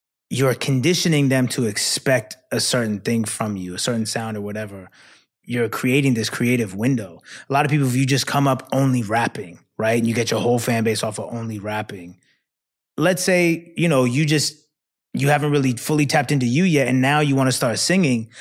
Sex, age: male, 20-39